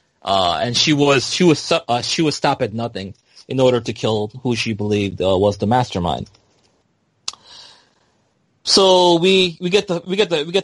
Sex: male